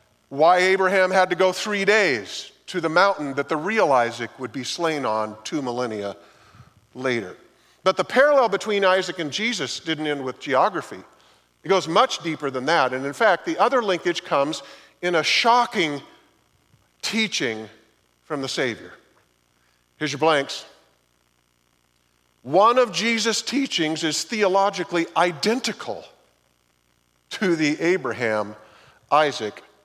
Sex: male